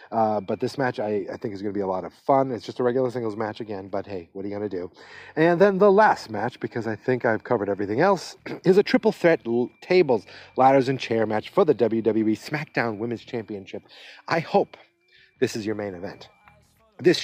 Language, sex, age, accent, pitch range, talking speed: English, male, 40-59, American, 110-145 Hz, 225 wpm